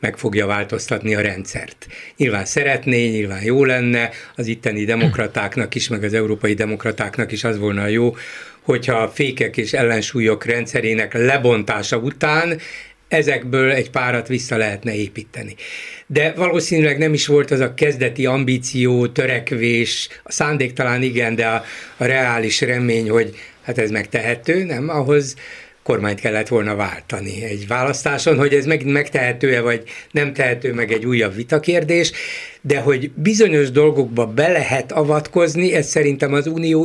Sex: male